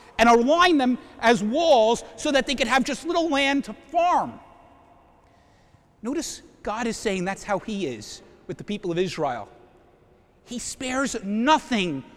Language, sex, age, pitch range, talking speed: English, male, 50-69, 205-280 Hz, 155 wpm